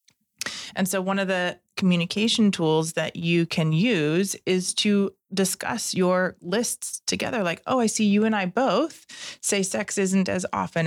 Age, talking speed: 30-49, 165 wpm